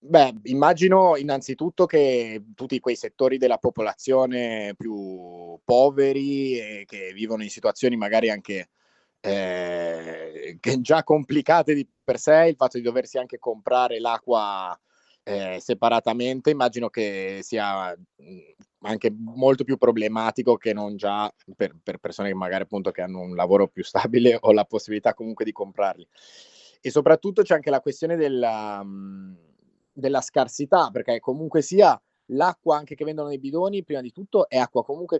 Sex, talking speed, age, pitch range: male, 145 wpm, 20-39, 105-135 Hz